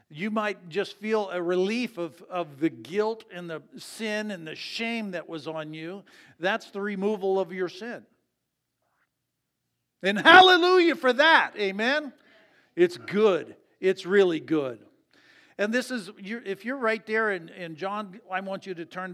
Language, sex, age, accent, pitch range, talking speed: English, male, 50-69, American, 170-220 Hz, 155 wpm